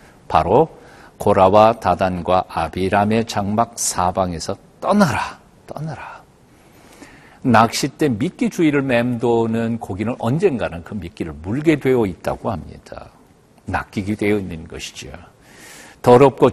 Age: 50-69